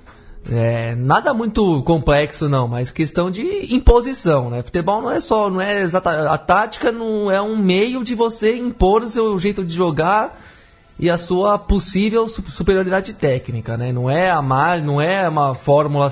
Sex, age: male, 20-39